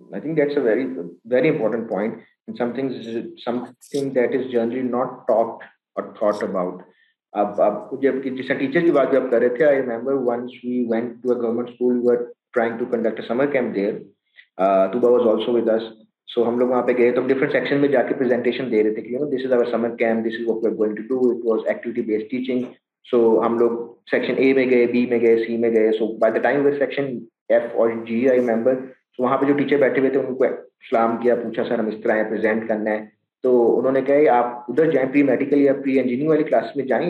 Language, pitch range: Urdu, 115-135 Hz